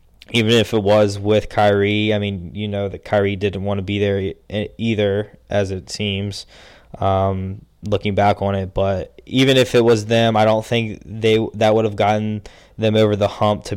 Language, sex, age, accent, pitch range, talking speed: English, male, 10-29, American, 100-115 Hz, 195 wpm